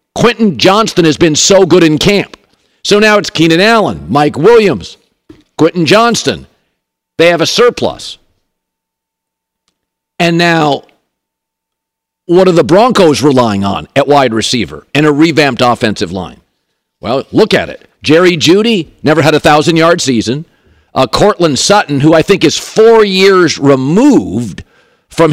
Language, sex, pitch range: English, male, 145-195 Hz